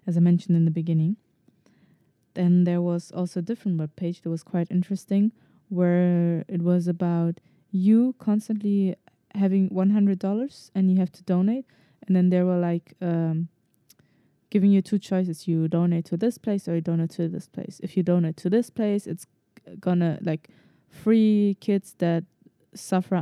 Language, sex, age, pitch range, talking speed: English, female, 20-39, 170-195 Hz, 170 wpm